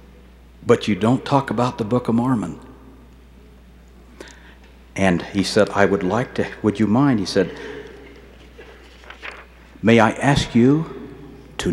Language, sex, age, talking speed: English, male, 60-79, 135 wpm